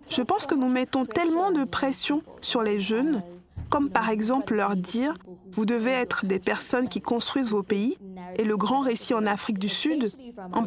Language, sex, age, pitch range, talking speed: French, female, 50-69, 215-270 Hz, 190 wpm